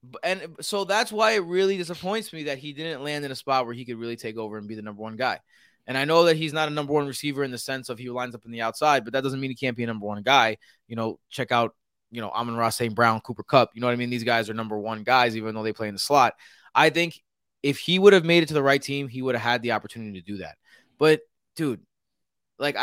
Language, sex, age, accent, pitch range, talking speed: English, male, 20-39, American, 120-165 Hz, 295 wpm